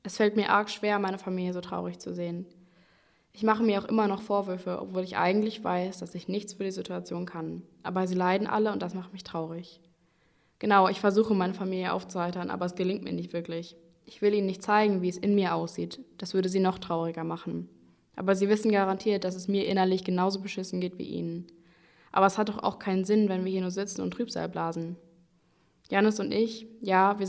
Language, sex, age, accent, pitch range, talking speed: German, female, 20-39, German, 170-200 Hz, 220 wpm